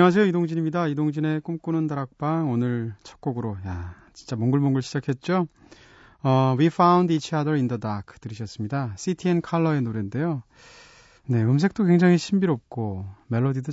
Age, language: 30-49, Korean